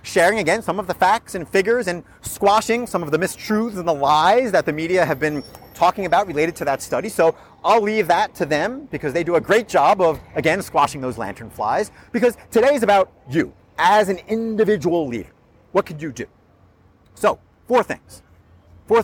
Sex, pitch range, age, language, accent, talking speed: male, 160-230 Hz, 30-49, English, American, 195 wpm